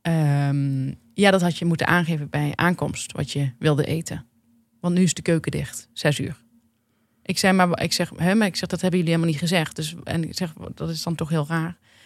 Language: Dutch